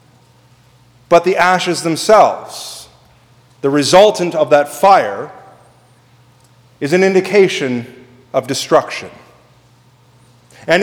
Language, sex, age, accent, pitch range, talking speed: English, male, 40-59, American, 135-185 Hz, 85 wpm